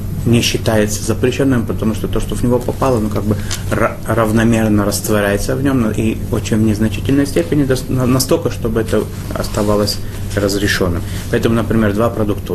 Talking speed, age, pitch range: 150 wpm, 30-49, 100-110 Hz